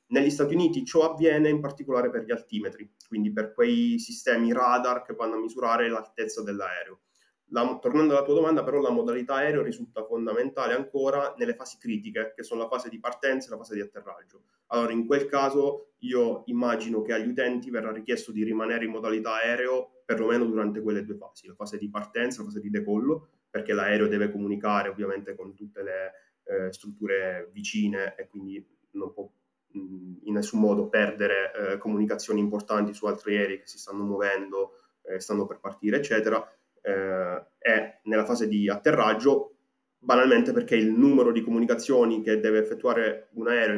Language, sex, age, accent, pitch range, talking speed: Italian, male, 20-39, native, 105-135 Hz, 175 wpm